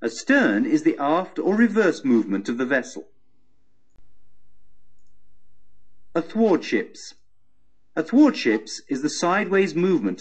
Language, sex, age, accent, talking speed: English, male, 50-69, British, 110 wpm